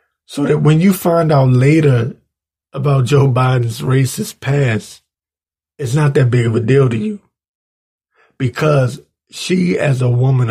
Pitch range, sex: 85-135 Hz, male